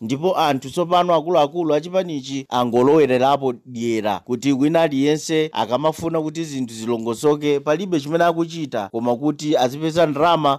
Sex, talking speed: male, 140 wpm